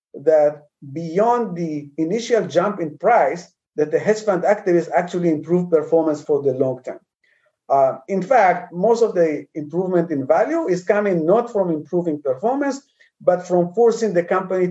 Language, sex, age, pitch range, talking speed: English, male, 50-69, 165-240 Hz, 160 wpm